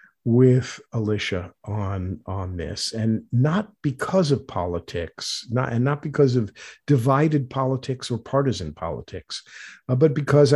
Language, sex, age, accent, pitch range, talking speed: English, male, 50-69, American, 110-140 Hz, 130 wpm